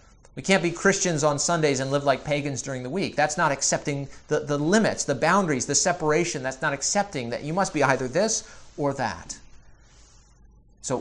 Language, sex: English, male